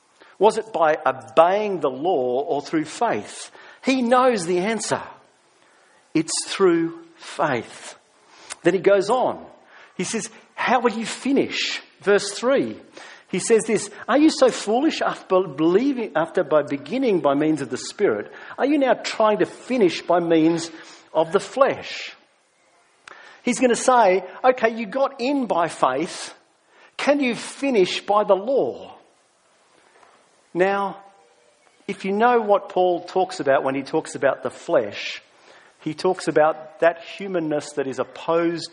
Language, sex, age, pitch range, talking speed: English, male, 50-69, 160-250 Hz, 145 wpm